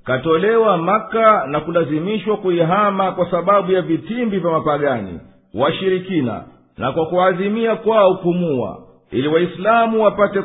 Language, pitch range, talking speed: Swahili, 170-215 Hz, 115 wpm